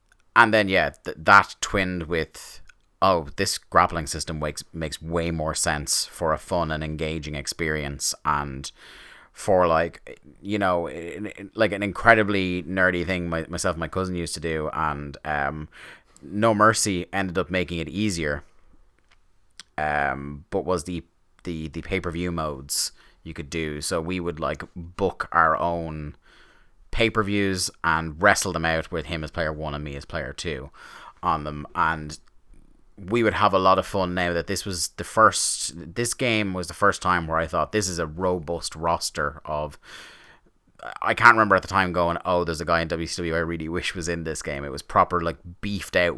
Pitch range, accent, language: 80-95 Hz, British, English